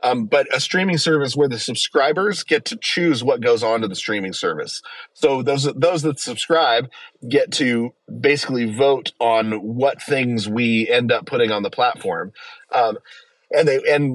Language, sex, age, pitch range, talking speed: English, male, 30-49, 115-170 Hz, 175 wpm